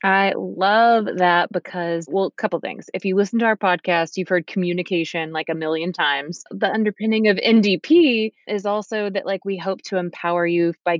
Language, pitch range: English, 170-195 Hz